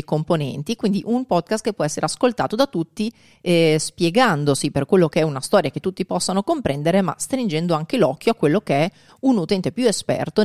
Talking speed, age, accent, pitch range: 195 wpm, 30-49, native, 155-220 Hz